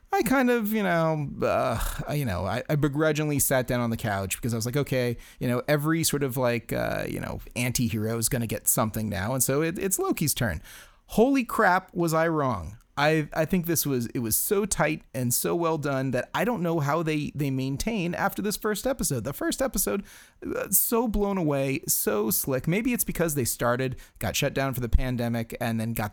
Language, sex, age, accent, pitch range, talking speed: English, male, 30-49, American, 120-155 Hz, 220 wpm